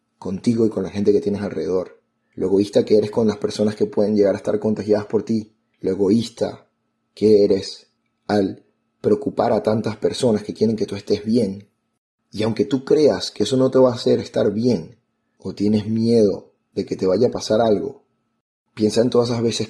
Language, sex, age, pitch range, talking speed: Spanish, male, 30-49, 105-120 Hz, 200 wpm